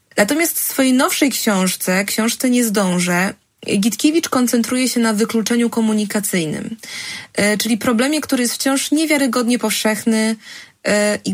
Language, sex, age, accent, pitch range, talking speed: Polish, female, 20-39, native, 210-260 Hz, 115 wpm